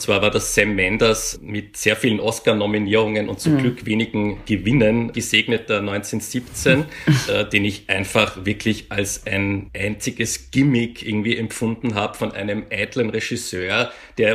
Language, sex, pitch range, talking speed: German, male, 100-115 Hz, 140 wpm